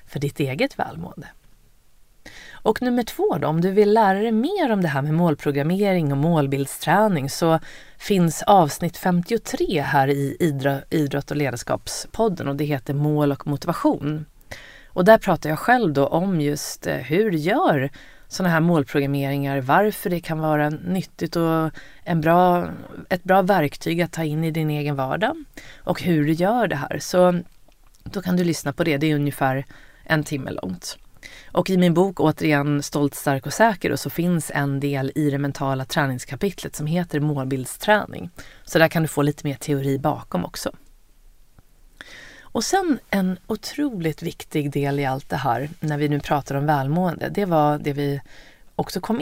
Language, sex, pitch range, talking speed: Swedish, female, 140-180 Hz, 170 wpm